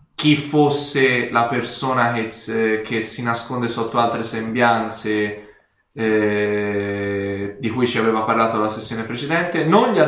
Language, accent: Italian, native